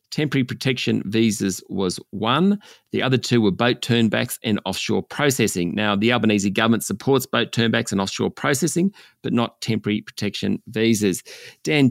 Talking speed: 150 wpm